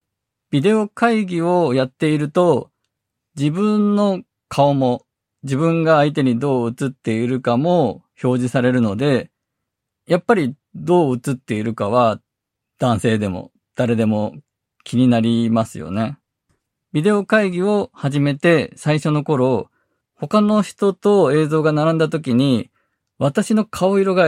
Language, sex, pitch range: Japanese, male, 120-165 Hz